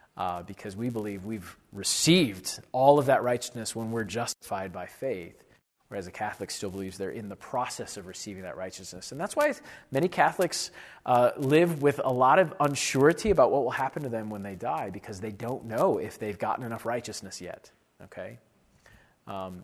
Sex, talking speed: male, 185 wpm